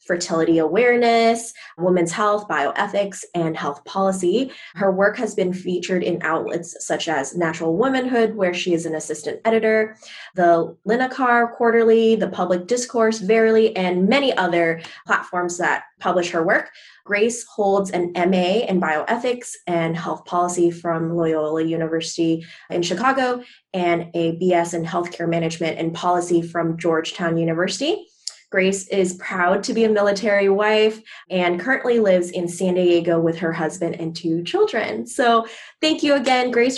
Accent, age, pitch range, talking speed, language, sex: American, 20-39, 170-220 Hz, 145 wpm, English, female